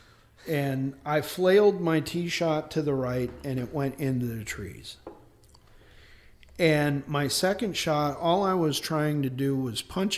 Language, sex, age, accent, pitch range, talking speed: English, male, 50-69, American, 125-165 Hz, 160 wpm